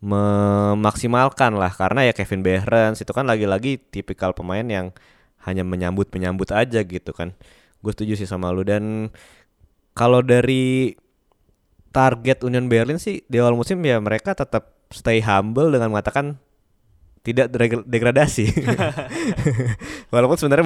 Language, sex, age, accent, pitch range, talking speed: Indonesian, male, 20-39, native, 100-125 Hz, 130 wpm